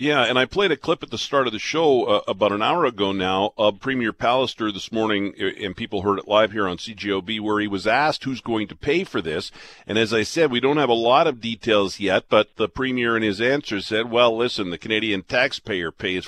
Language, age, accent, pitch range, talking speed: English, 50-69, American, 110-130 Hz, 245 wpm